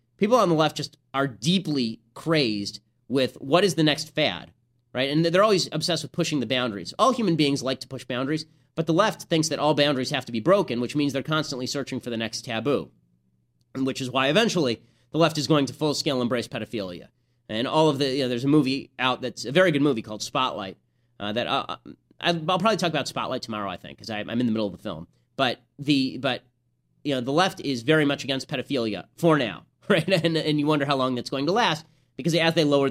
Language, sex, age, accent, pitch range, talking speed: English, male, 30-49, American, 120-155 Hz, 230 wpm